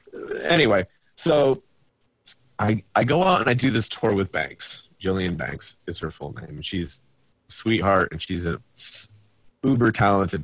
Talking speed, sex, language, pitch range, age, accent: 150 wpm, male, English, 95-130 Hz, 30-49, American